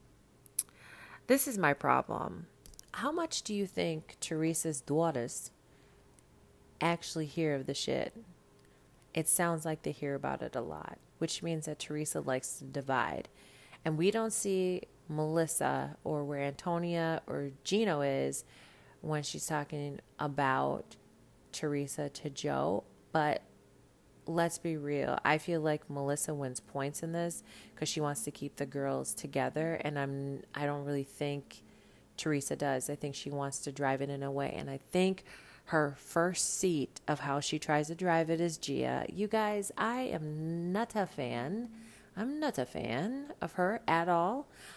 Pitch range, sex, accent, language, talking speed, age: 140-170 Hz, female, American, English, 160 wpm, 30-49